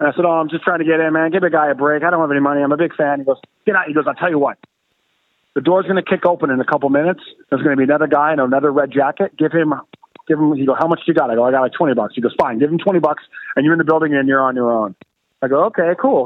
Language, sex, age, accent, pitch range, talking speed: English, male, 30-49, American, 140-185 Hz, 345 wpm